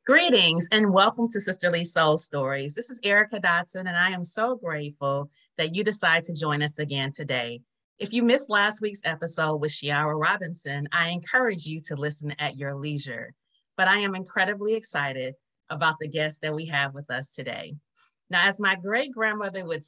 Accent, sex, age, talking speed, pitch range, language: American, female, 30-49, 180 wpm, 150-195 Hz, English